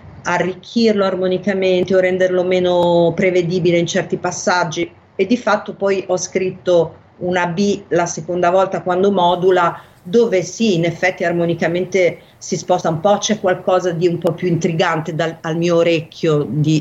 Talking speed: 150 wpm